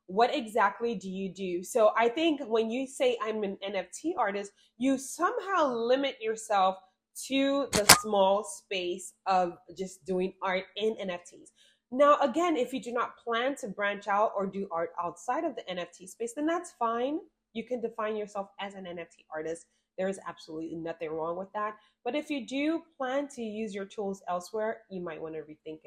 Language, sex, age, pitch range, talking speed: English, female, 20-39, 180-230 Hz, 185 wpm